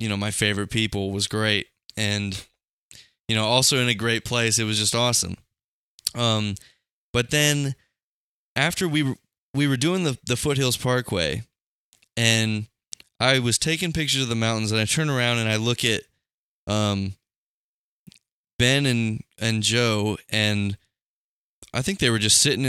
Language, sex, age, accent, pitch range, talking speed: English, male, 20-39, American, 105-130 Hz, 160 wpm